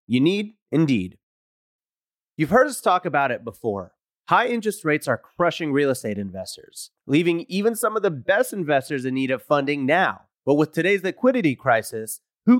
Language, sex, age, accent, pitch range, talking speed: English, male, 30-49, American, 135-195 Hz, 170 wpm